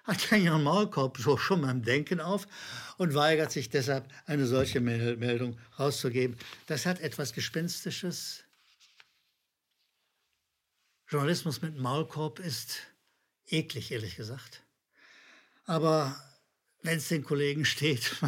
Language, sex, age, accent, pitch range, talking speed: German, male, 60-79, German, 135-180 Hz, 110 wpm